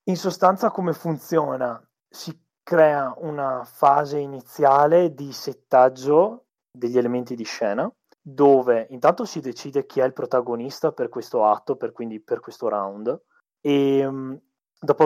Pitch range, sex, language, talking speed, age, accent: 125-160 Hz, male, Italian, 130 wpm, 20-39, native